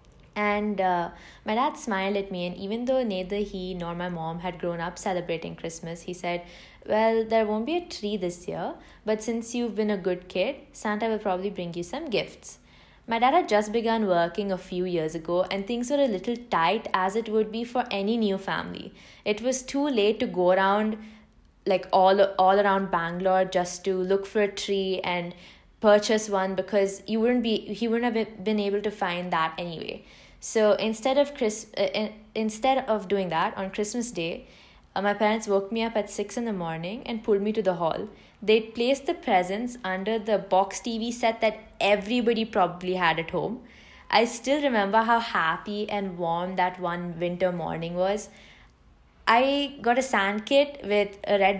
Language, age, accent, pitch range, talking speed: English, 20-39, Indian, 185-225 Hz, 195 wpm